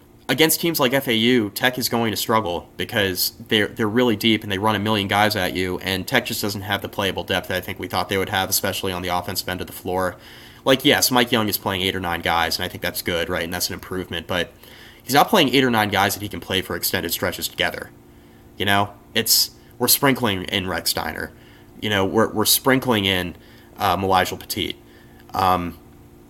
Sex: male